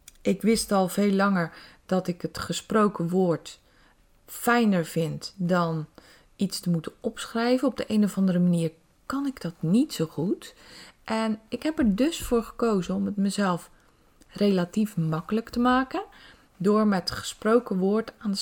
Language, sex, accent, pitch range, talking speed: Dutch, female, Dutch, 170-240 Hz, 160 wpm